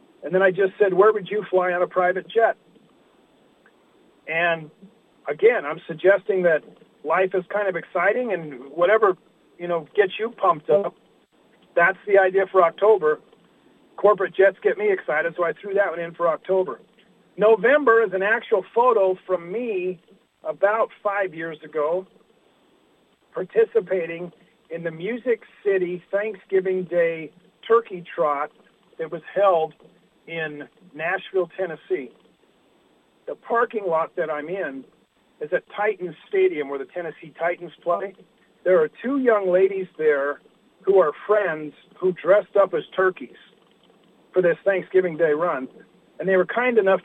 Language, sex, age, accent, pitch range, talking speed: English, male, 40-59, American, 175-220 Hz, 145 wpm